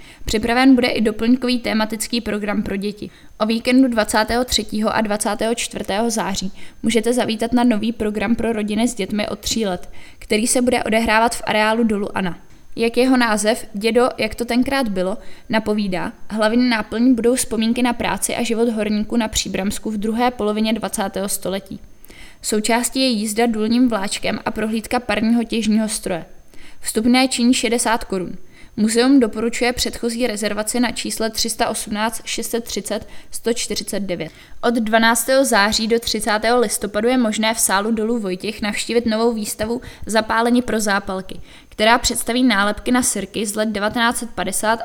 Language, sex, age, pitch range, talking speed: Czech, female, 20-39, 210-240 Hz, 145 wpm